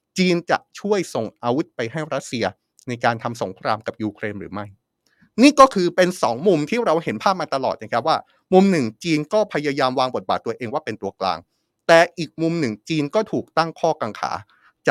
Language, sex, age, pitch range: Thai, male, 30-49, 125-180 Hz